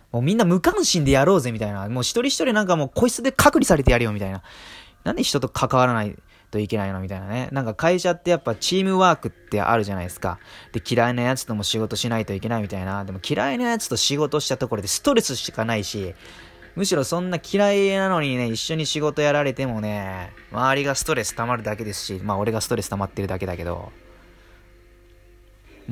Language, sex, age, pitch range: Japanese, male, 20-39, 105-145 Hz